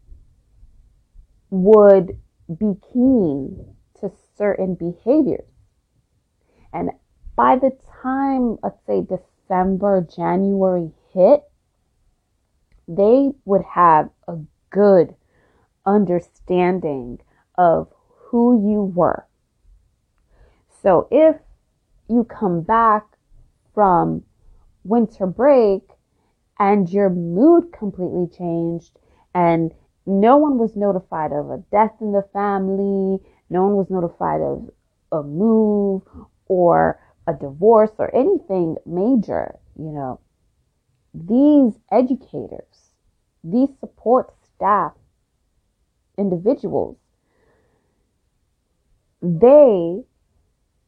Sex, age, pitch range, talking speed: female, 20-39, 165-215 Hz, 85 wpm